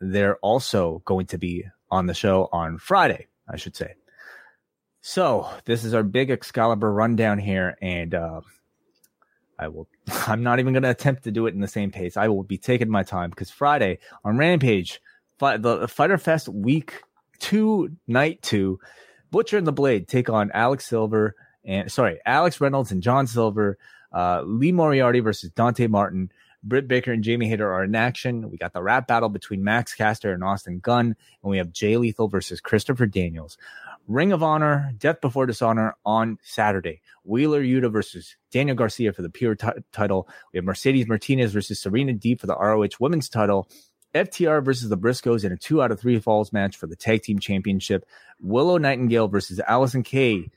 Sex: male